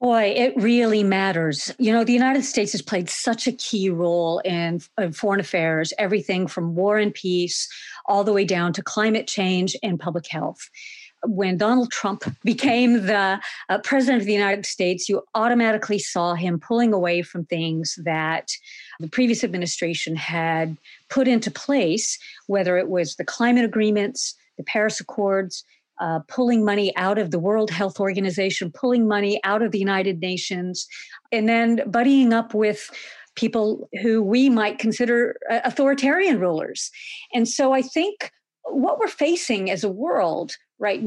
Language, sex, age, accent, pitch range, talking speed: English, female, 50-69, American, 185-240 Hz, 160 wpm